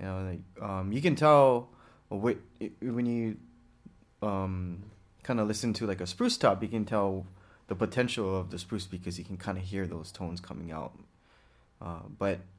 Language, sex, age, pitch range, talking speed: English, male, 20-39, 95-115 Hz, 170 wpm